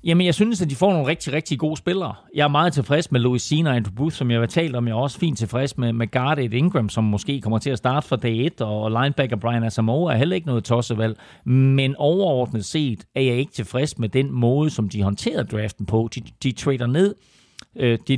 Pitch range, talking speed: 115-145 Hz, 240 wpm